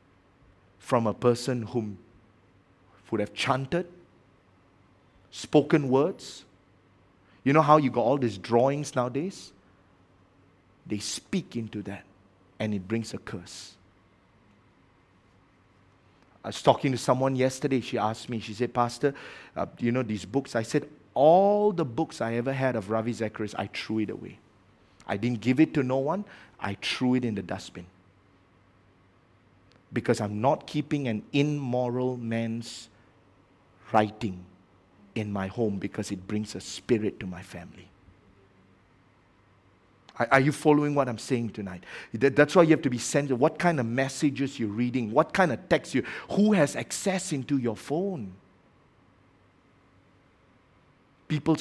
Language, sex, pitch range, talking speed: English, male, 95-135 Hz, 145 wpm